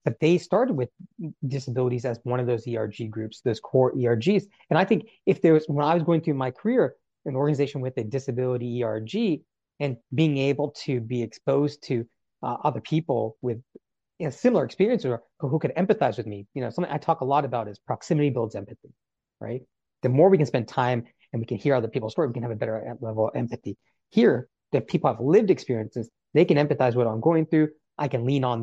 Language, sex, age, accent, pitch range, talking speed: English, male, 30-49, American, 115-150 Hz, 225 wpm